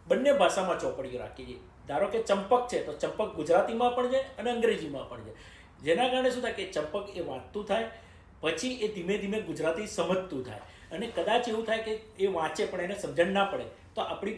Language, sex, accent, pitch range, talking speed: Gujarati, male, native, 155-225 Hz, 200 wpm